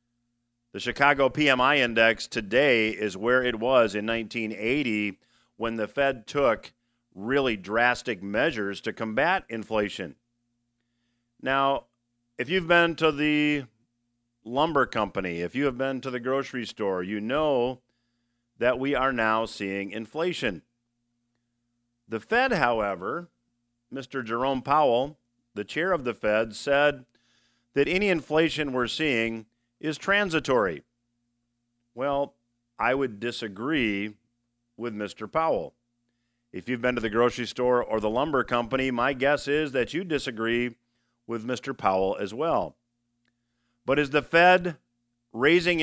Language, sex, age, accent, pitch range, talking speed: English, male, 50-69, American, 120-140 Hz, 130 wpm